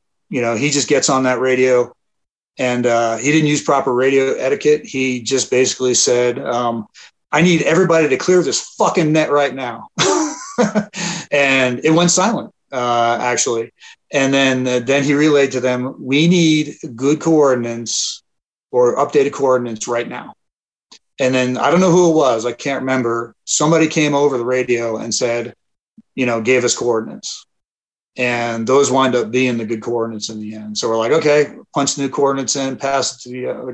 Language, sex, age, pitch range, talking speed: English, male, 40-59, 120-150 Hz, 180 wpm